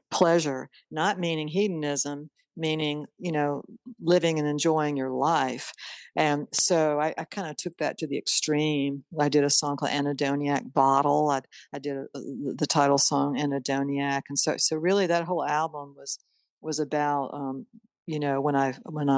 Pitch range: 140-160 Hz